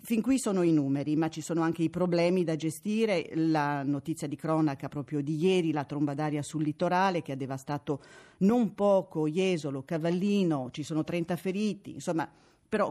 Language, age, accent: Italian, 40-59, native